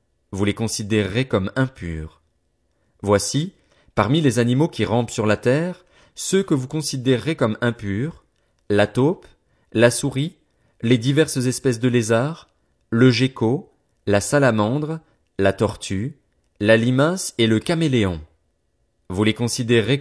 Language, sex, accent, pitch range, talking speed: French, male, French, 100-135 Hz, 130 wpm